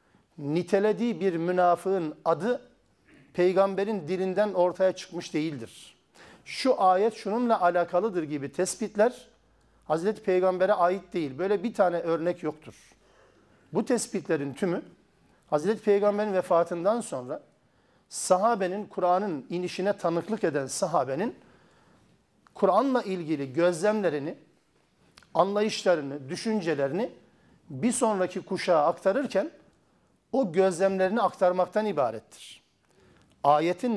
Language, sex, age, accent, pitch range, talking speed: Turkish, male, 50-69, native, 170-210 Hz, 90 wpm